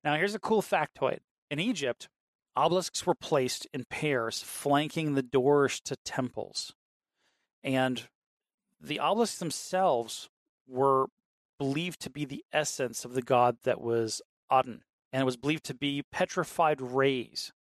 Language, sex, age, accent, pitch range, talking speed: English, male, 40-59, American, 125-150 Hz, 140 wpm